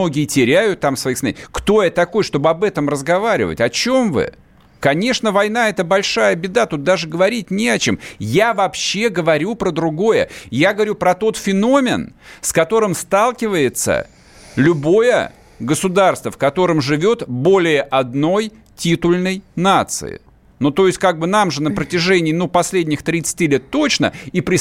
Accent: native